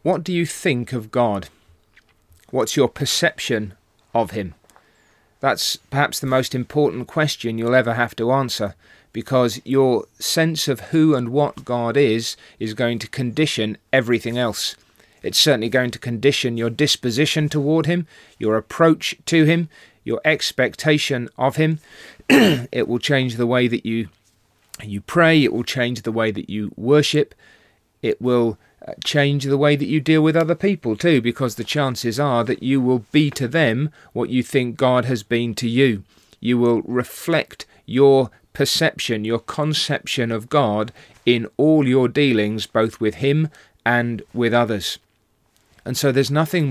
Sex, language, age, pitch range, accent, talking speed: male, English, 40-59, 115-145 Hz, British, 160 wpm